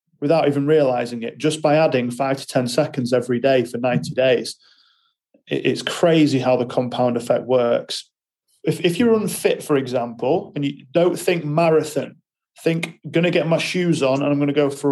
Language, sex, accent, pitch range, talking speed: English, male, British, 130-165 Hz, 190 wpm